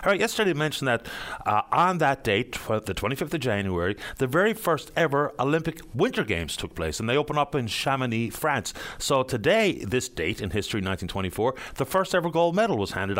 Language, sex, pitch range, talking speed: English, male, 110-160 Hz, 195 wpm